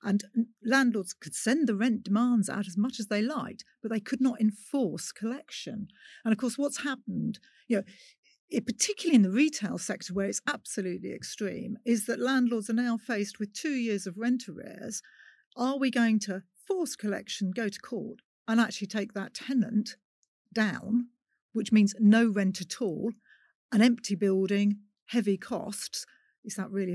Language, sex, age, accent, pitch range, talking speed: English, female, 50-69, British, 195-235 Hz, 170 wpm